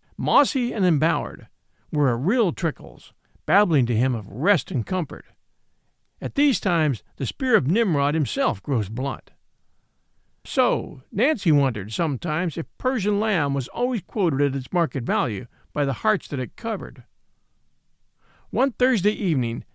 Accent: American